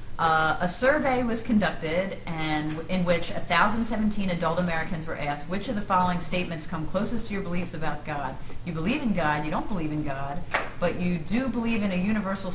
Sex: female